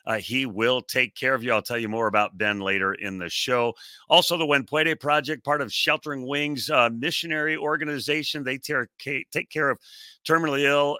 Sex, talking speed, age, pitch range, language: male, 190 wpm, 40-59, 110-145 Hz, English